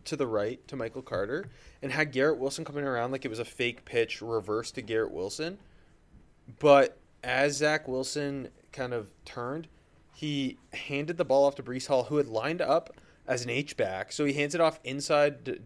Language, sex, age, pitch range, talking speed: English, male, 20-39, 110-140 Hz, 200 wpm